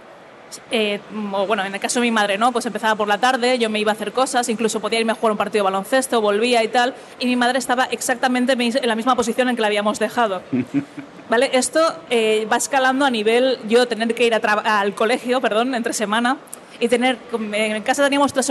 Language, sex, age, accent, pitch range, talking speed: Spanish, female, 20-39, Spanish, 215-255 Hz, 225 wpm